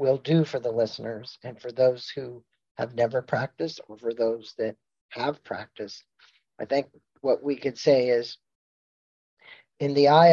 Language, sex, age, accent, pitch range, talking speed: English, male, 40-59, American, 120-145 Hz, 165 wpm